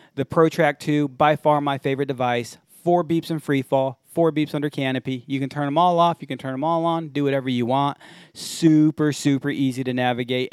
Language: English